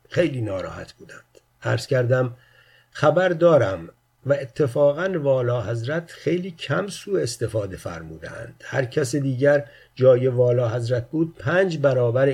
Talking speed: 120 wpm